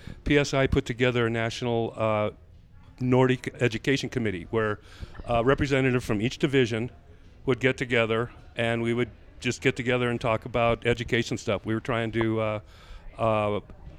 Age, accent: 50-69, American